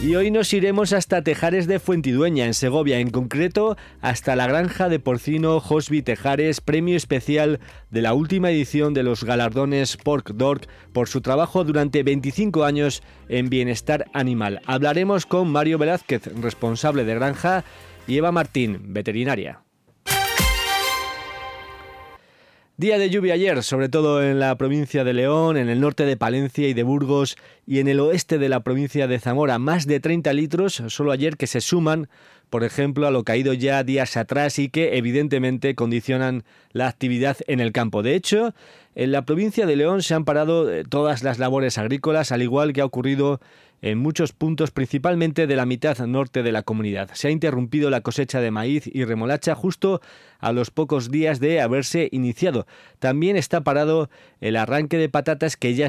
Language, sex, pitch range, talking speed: Spanish, male, 125-155 Hz, 170 wpm